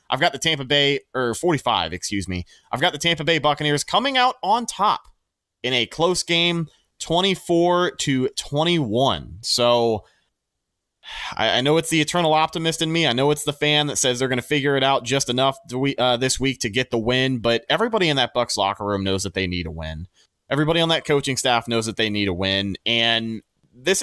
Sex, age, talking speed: male, 30-49, 215 wpm